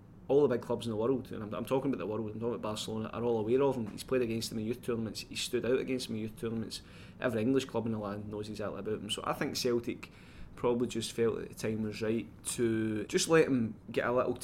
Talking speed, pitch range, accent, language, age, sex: 280 wpm, 105-125 Hz, British, English, 20-39, male